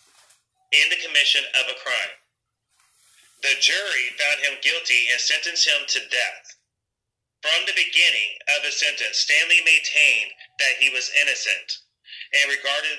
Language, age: English, 30-49